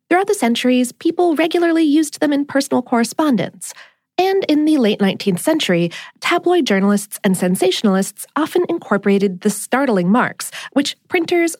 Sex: female